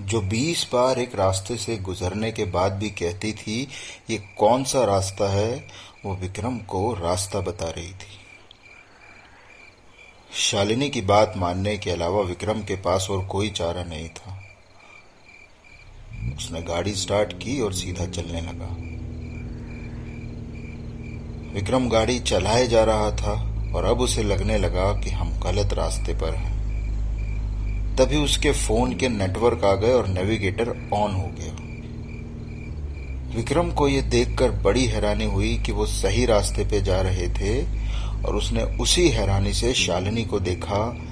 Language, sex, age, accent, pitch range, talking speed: Hindi, male, 30-49, native, 95-115 Hz, 140 wpm